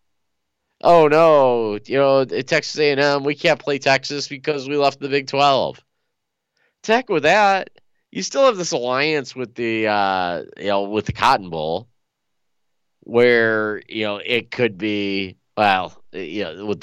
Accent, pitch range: American, 95-135 Hz